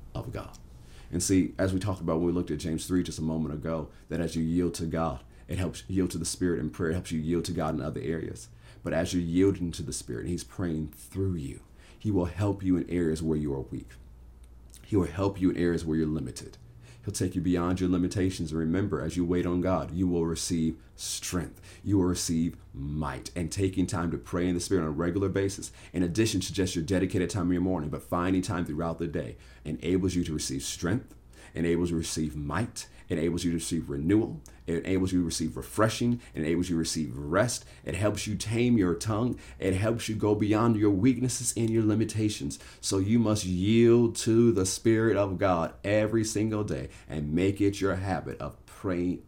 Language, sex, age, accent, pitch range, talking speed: English, male, 30-49, American, 80-100 Hz, 225 wpm